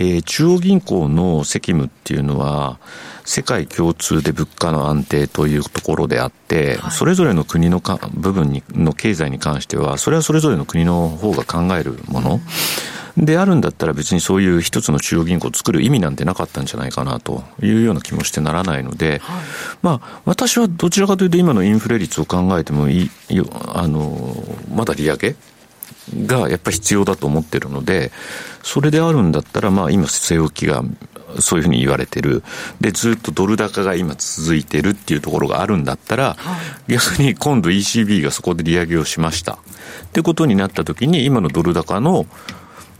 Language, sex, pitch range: Japanese, male, 75-125 Hz